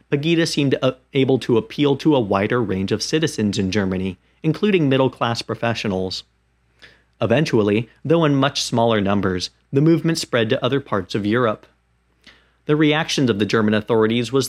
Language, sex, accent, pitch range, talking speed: English, male, American, 100-140 Hz, 155 wpm